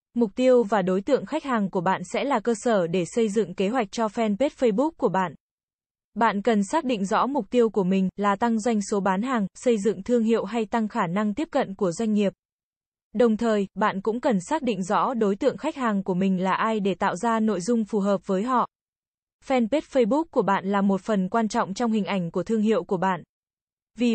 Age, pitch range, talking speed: 20-39, 200-240 Hz, 235 wpm